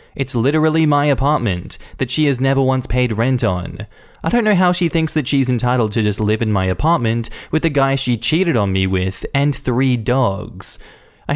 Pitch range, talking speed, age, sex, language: 100-140 Hz, 205 wpm, 20-39, male, English